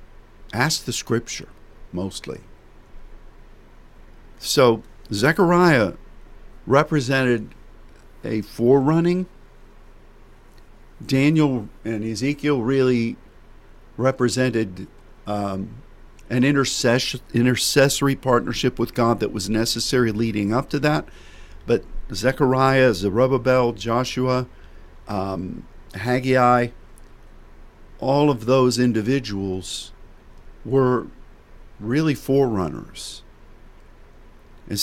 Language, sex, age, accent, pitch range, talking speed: English, male, 50-69, American, 100-135 Hz, 70 wpm